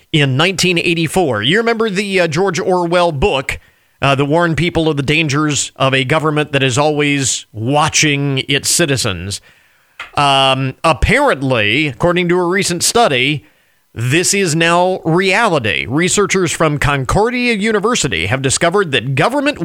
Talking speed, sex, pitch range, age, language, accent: 135 wpm, male, 130-180 Hz, 40-59, English, American